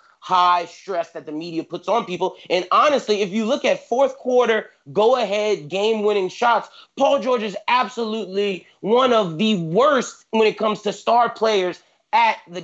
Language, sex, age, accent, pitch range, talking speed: English, male, 30-49, American, 170-215 Hz, 165 wpm